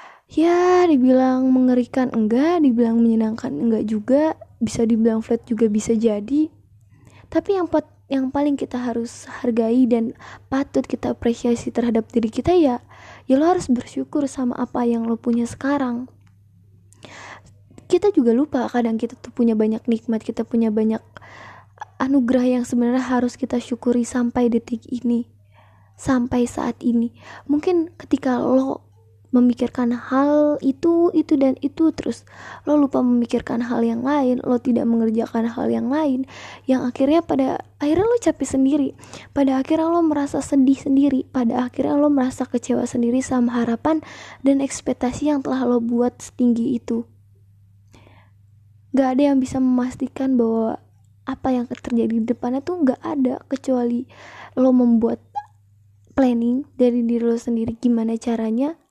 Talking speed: 140 wpm